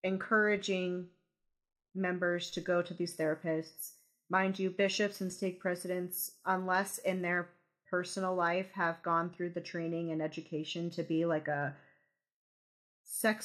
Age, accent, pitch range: 30-49, American, 175-200 Hz